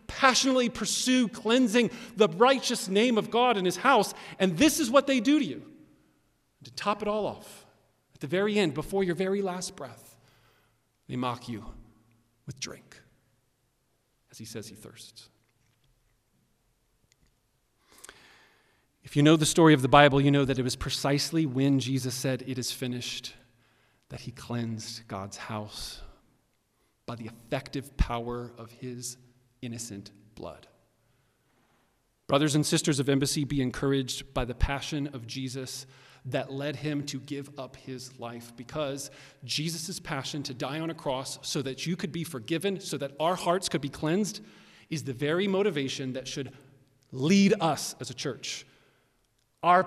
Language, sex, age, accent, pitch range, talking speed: English, male, 40-59, American, 120-165 Hz, 155 wpm